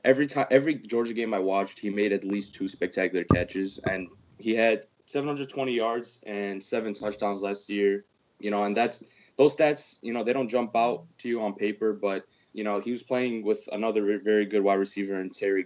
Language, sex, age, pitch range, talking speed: English, male, 20-39, 90-110 Hz, 205 wpm